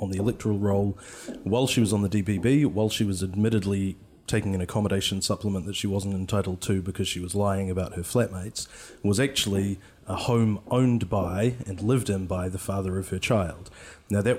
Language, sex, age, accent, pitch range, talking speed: English, male, 30-49, Australian, 95-110 Hz, 195 wpm